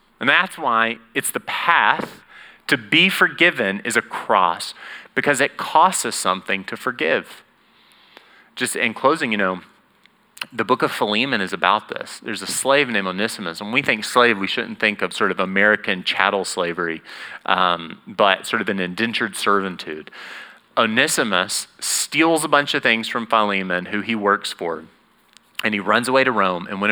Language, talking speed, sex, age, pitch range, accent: English, 170 wpm, male, 30-49, 95-115 Hz, American